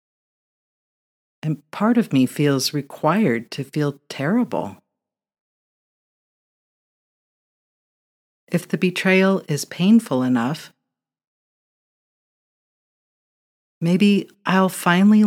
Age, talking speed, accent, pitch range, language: 50-69, 70 wpm, American, 130-175 Hz, English